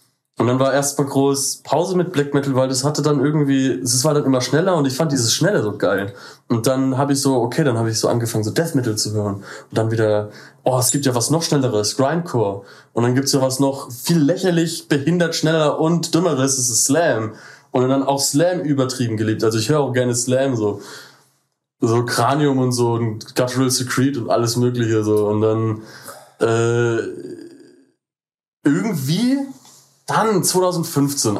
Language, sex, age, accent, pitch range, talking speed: German, male, 20-39, German, 120-145 Hz, 185 wpm